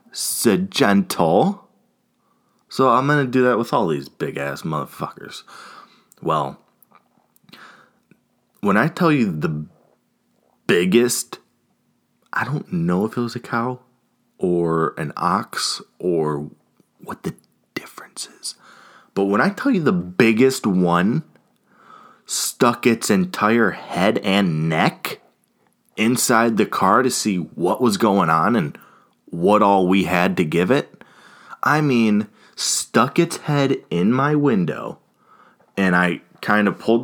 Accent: American